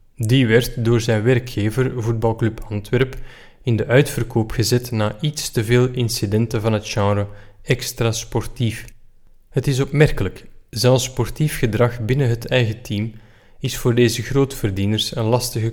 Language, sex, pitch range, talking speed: Dutch, male, 110-130 Hz, 140 wpm